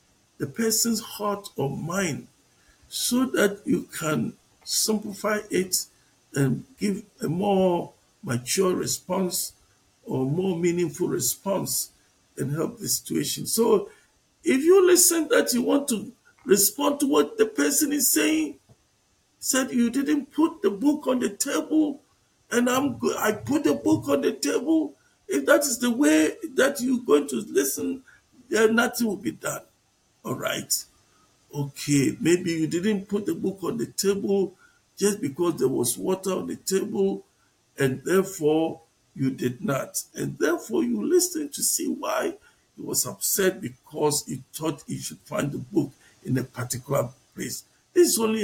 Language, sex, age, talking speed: English, male, 50-69, 155 wpm